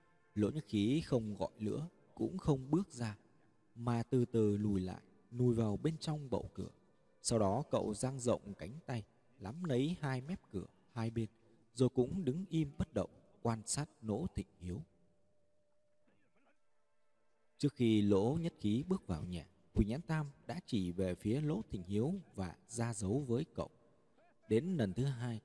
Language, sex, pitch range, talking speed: Vietnamese, male, 95-140 Hz, 170 wpm